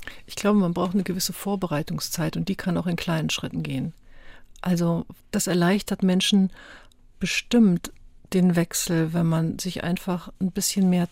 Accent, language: German, German